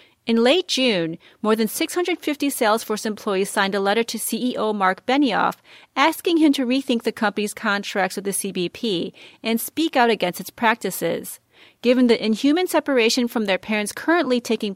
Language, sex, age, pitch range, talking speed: English, female, 30-49, 200-265 Hz, 165 wpm